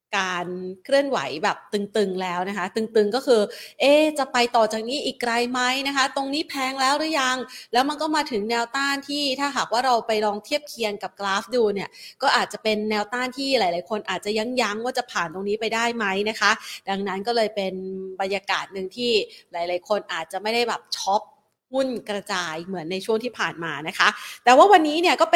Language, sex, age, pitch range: Thai, female, 30-49, 205-265 Hz